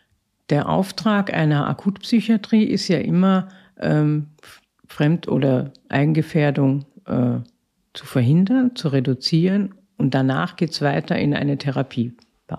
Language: German